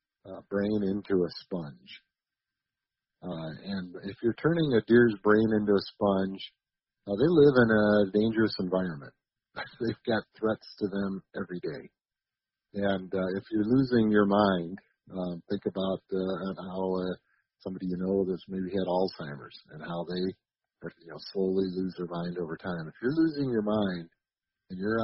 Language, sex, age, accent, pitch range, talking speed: English, male, 40-59, American, 95-115 Hz, 160 wpm